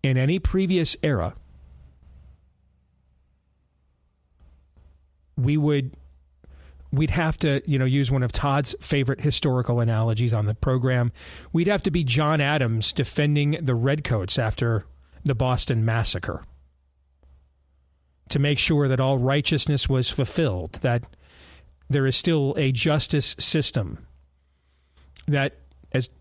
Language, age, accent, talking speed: English, 40-59, American, 115 wpm